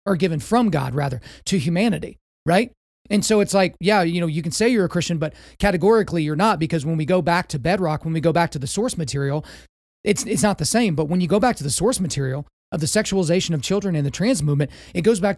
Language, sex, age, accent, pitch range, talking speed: English, male, 30-49, American, 155-195 Hz, 260 wpm